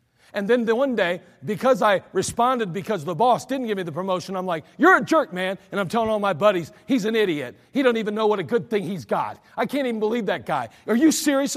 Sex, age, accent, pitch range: male, 40-59, American, 125-205 Hz